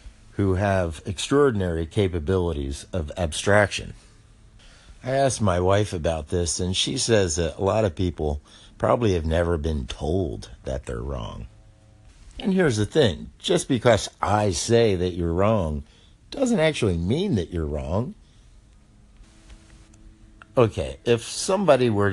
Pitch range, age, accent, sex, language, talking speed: 85-110 Hz, 50-69, American, male, English, 135 wpm